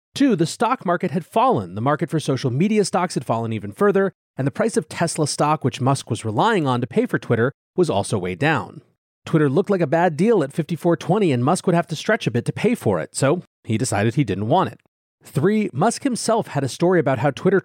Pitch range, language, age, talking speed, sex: 125-185 Hz, English, 30-49, 240 wpm, male